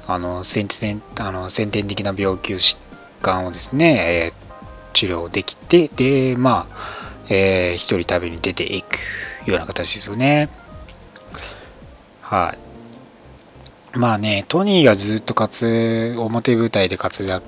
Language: Japanese